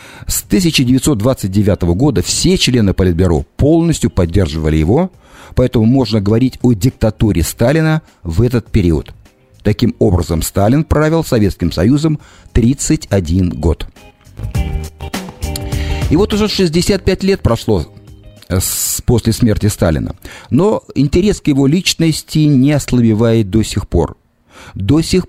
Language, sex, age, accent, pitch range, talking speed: Russian, male, 50-69, native, 95-140 Hz, 110 wpm